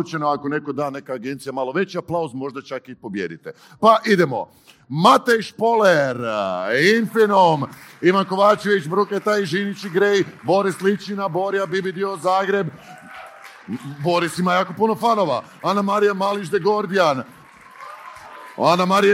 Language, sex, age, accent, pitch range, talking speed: Croatian, male, 50-69, native, 185-210 Hz, 130 wpm